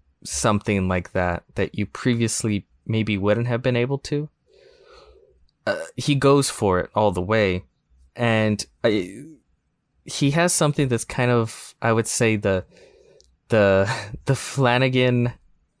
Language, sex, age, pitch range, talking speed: English, male, 20-39, 100-130 Hz, 130 wpm